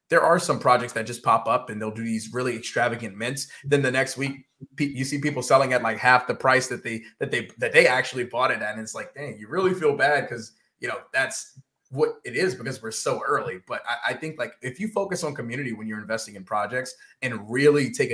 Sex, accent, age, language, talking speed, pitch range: male, American, 20-39, English, 250 wpm, 115-145 Hz